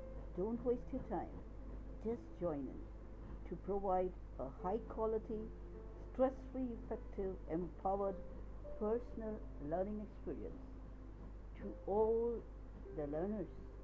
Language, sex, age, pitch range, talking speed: Hindi, female, 60-79, 180-235 Hz, 90 wpm